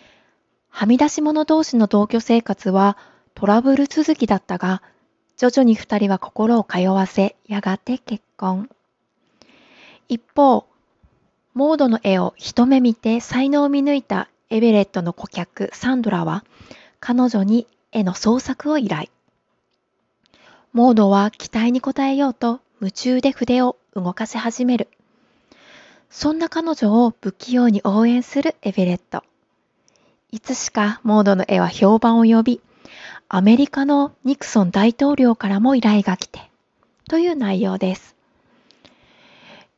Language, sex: Japanese, female